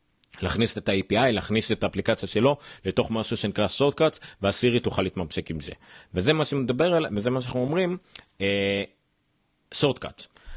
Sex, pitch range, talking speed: male, 95-120 Hz, 165 wpm